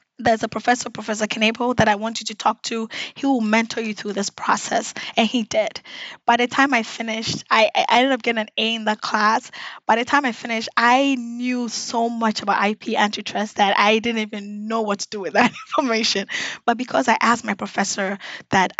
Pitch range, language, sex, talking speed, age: 215-255 Hz, English, female, 215 wpm, 20-39